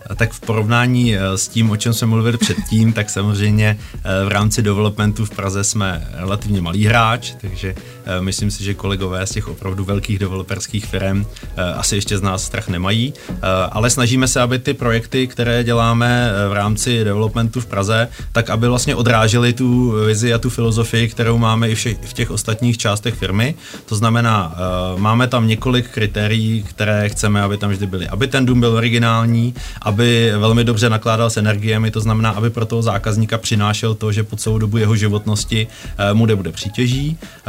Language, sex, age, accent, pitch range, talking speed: Czech, male, 30-49, native, 105-115 Hz, 175 wpm